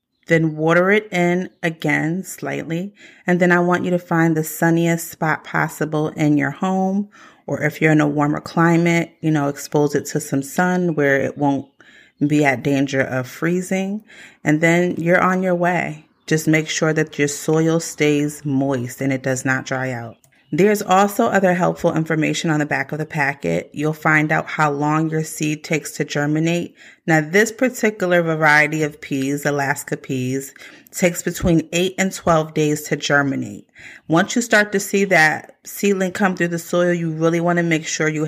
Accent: American